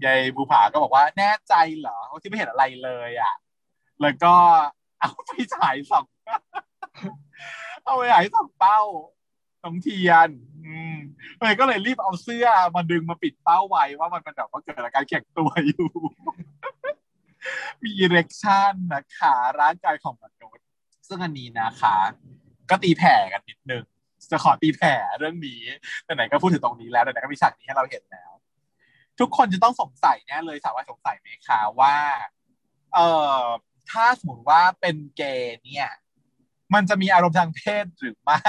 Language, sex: Thai, male